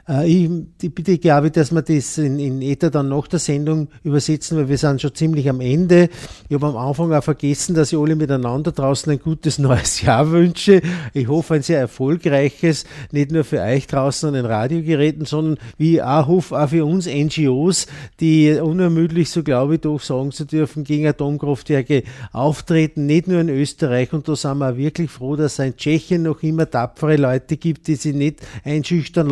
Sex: male